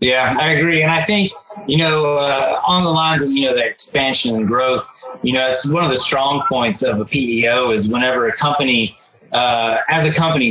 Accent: American